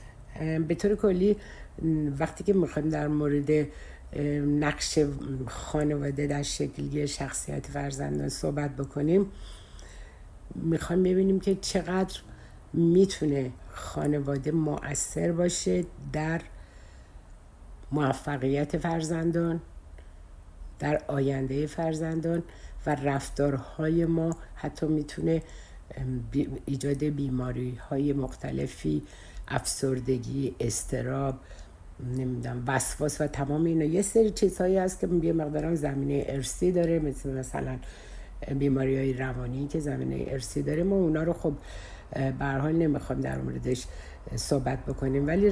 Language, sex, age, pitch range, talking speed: Persian, female, 60-79, 125-160 Hz, 100 wpm